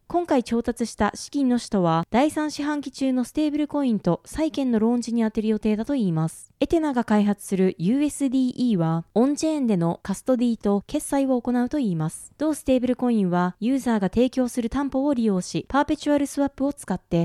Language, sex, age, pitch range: Japanese, female, 20-39, 200-280 Hz